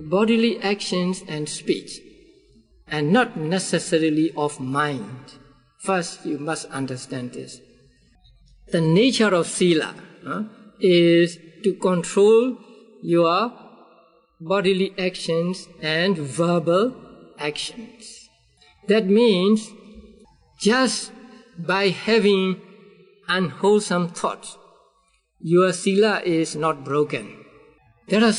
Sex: male